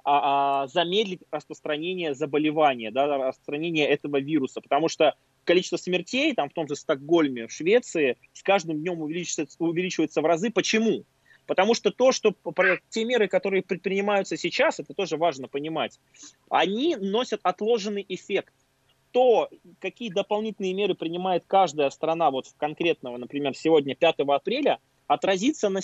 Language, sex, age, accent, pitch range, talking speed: Russian, male, 20-39, native, 150-195 Hz, 135 wpm